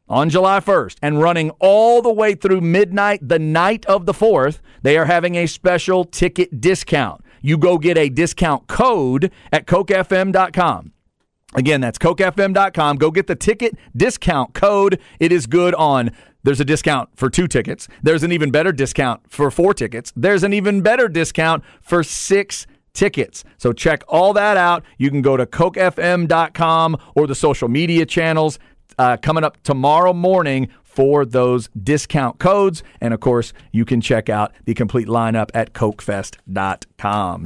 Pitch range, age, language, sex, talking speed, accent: 125-170 Hz, 40-59, English, male, 160 wpm, American